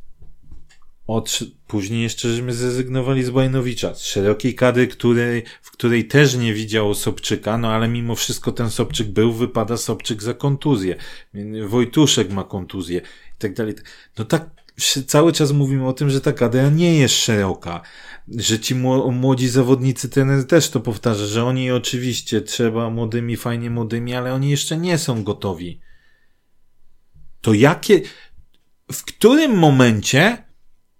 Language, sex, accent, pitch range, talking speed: Polish, male, native, 115-150 Hz, 135 wpm